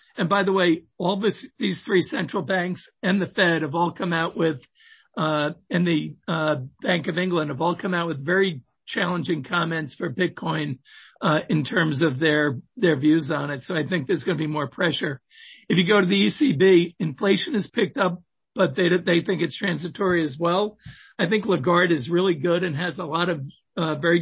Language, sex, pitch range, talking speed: English, male, 160-190 Hz, 210 wpm